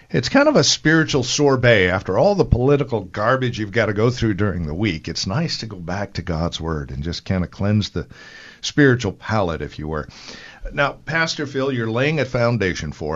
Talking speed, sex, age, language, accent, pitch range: 210 wpm, male, 50-69, English, American, 95-130 Hz